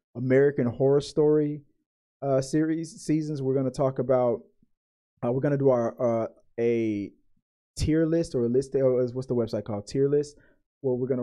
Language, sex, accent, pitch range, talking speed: English, male, American, 125-145 Hz, 175 wpm